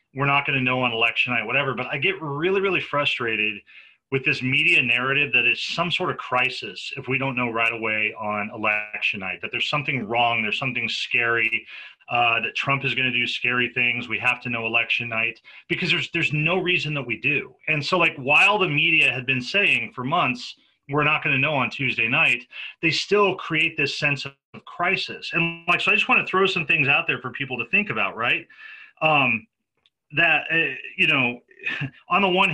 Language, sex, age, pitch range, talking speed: English, male, 30-49, 120-155 Hz, 205 wpm